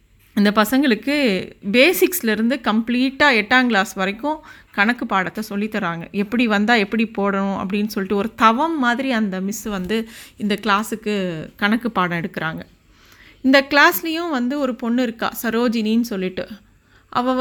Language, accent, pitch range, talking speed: Tamil, native, 210-260 Hz, 125 wpm